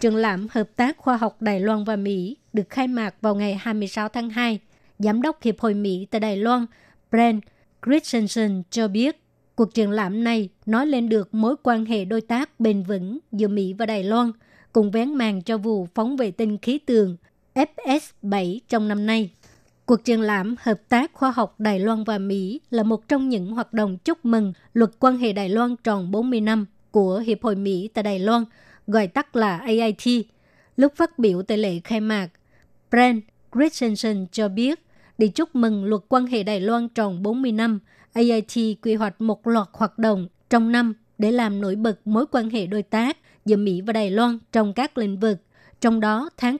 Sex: male